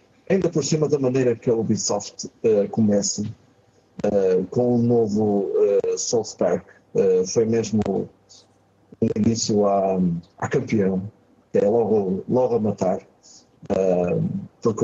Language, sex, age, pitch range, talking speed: Portuguese, male, 50-69, 100-130 Hz, 130 wpm